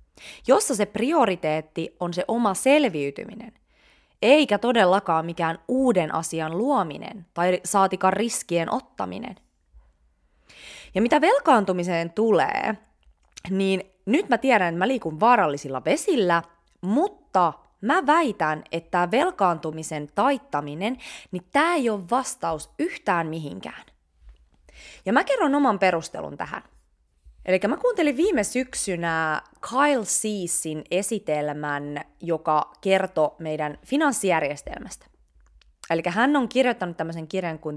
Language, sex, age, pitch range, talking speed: Finnish, female, 20-39, 155-235 Hz, 110 wpm